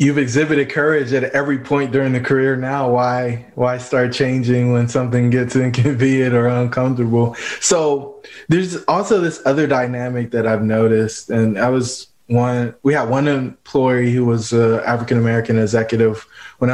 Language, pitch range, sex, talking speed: English, 120-140 Hz, male, 160 wpm